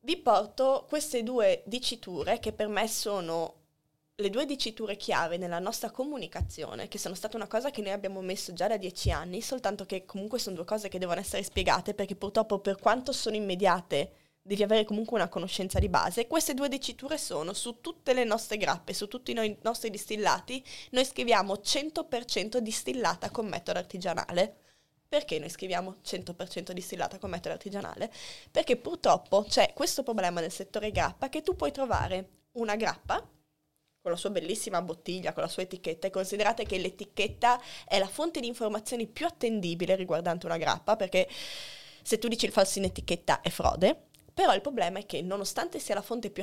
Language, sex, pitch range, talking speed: Italian, female, 190-245 Hz, 180 wpm